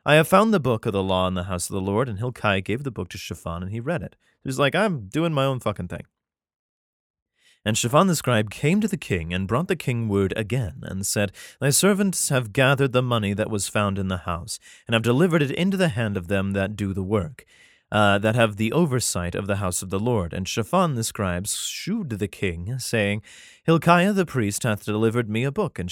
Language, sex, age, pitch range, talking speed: English, male, 30-49, 100-130 Hz, 240 wpm